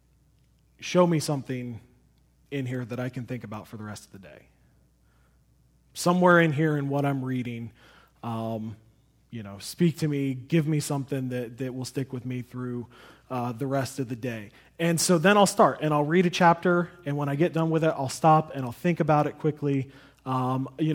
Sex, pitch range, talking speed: male, 130-160 Hz, 205 wpm